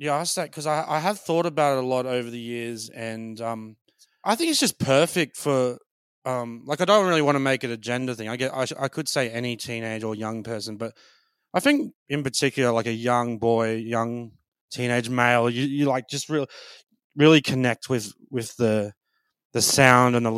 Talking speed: 220 wpm